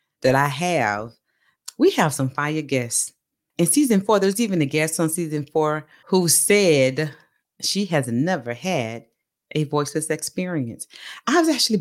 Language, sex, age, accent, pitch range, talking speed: English, female, 40-59, American, 135-195 Hz, 145 wpm